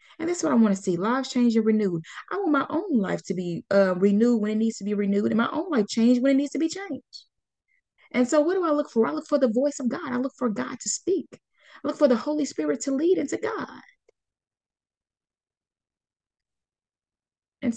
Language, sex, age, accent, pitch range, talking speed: English, female, 20-39, American, 205-285 Hz, 230 wpm